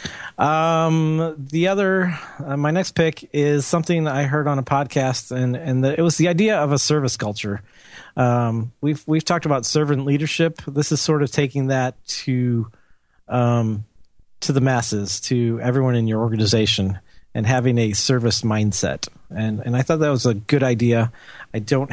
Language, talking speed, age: English, 175 wpm, 40-59